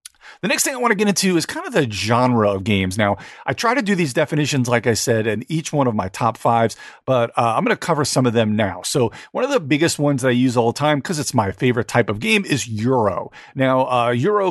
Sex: male